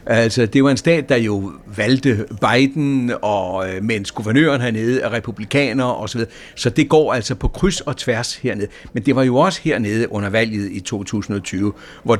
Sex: male